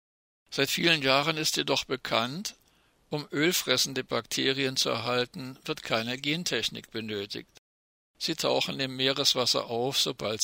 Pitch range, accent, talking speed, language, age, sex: 120-145 Hz, German, 120 wpm, German, 60-79, male